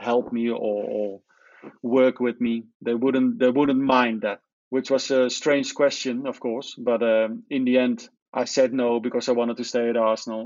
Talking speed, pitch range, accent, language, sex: 200 wpm, 115-130 Hz, Dutch, English, male